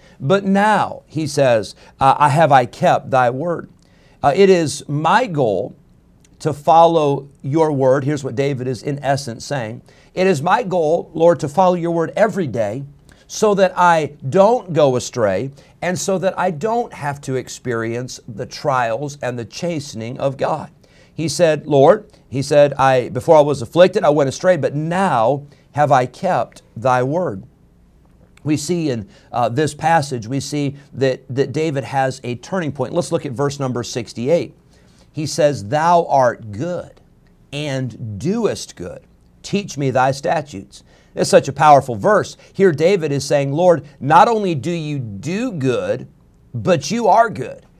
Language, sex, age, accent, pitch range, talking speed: English, male, 50-69, American, 130-175 Hz, 165 wpm